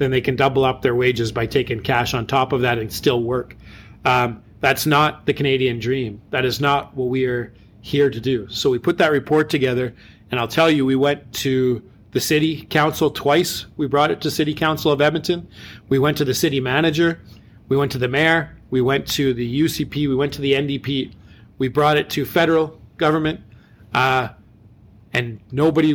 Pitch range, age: 120-150 Hz, 40-59